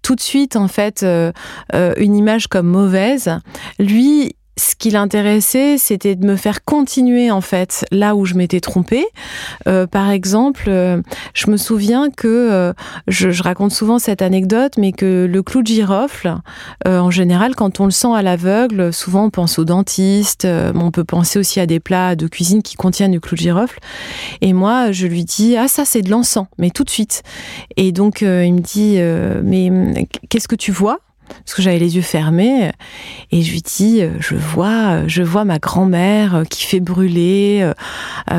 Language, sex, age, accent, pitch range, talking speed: French, female, 30-49, French, 180-215 Hz, 195 wpm